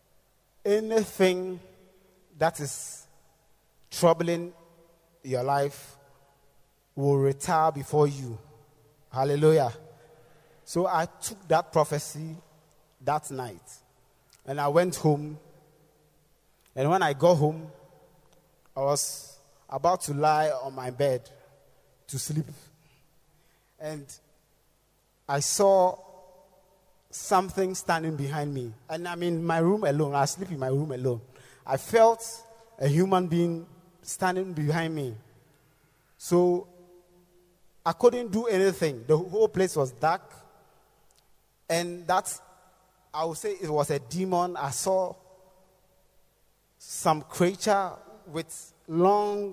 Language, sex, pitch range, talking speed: English, male, 145-185 Hz, 110 wpm